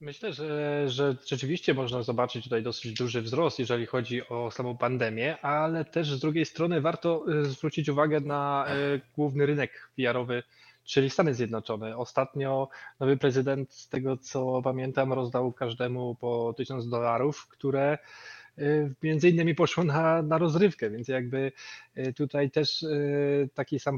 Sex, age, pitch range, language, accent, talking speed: male, 20-39, 125-145 Hz, Polish, native, 140 wpm